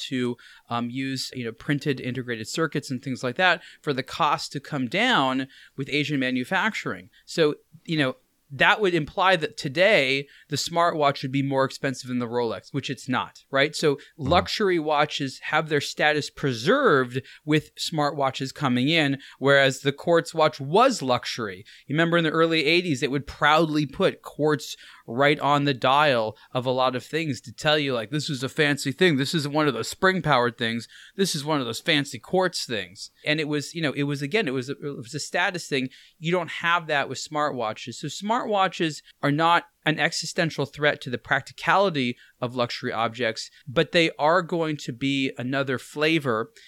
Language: English